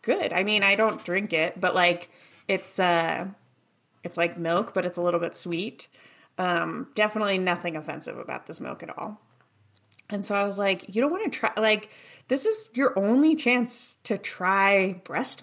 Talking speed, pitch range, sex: 185 wpm, 180-235 Hz, female